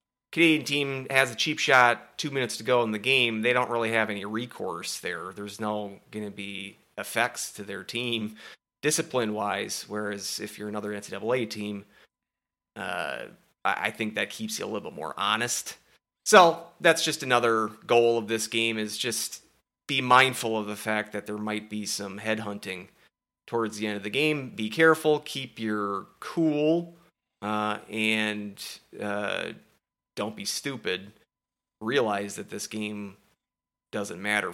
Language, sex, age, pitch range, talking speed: English, male, 30-49, 105-130 Hz, 160 wpm